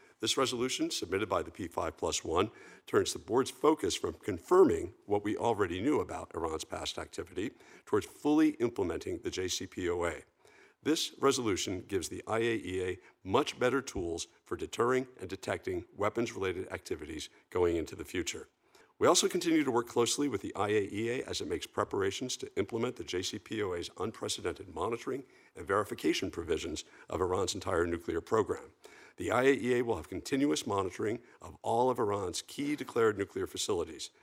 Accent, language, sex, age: American, English, male, 50-69